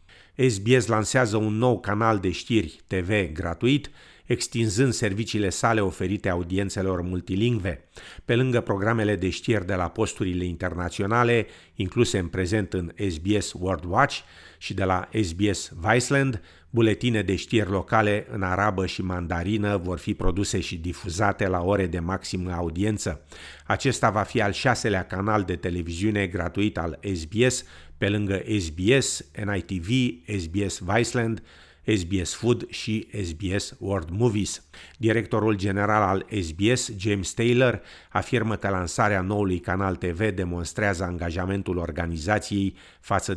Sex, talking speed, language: male, 130 wpm, Romanian